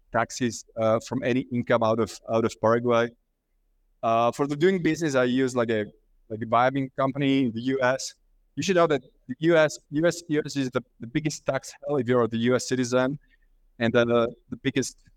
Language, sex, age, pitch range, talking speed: English, male, 30-49, 120-145 Hz, 200 wpm